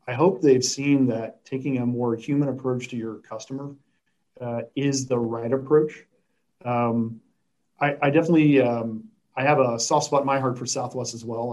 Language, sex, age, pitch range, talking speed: English, male, 40-59, 120-150 Hz, 180 wpm